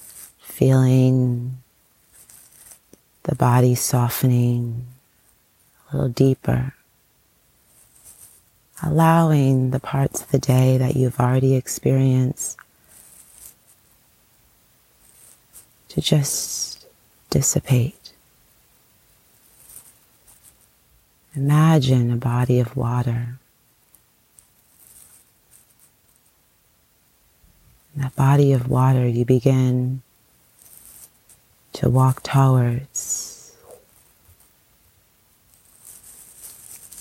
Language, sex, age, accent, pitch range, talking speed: English, female, 30-49, American, 120-135 Hz, 55 wpm